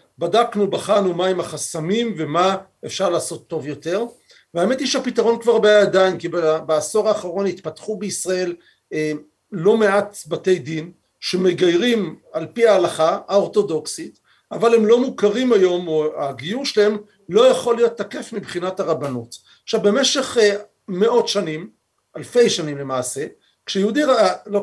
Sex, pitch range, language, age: male, 175-230 Hz, Hebrew, 50-69